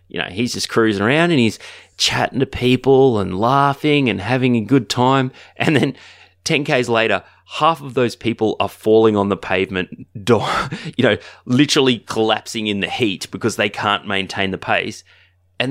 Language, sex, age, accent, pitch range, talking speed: English, male, 20-39, Australian, 90-120 Hz, 175 wpm